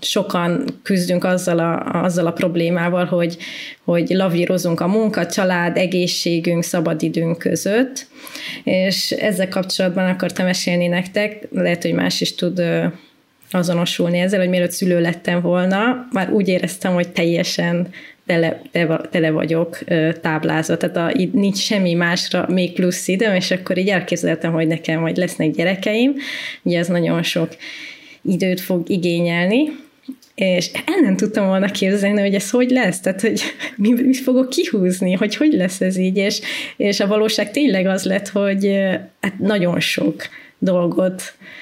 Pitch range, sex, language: 170-205 Hz, female, Hungarian